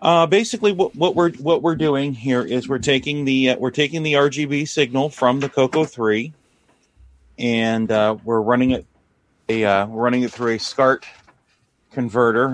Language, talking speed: English, 175 wpm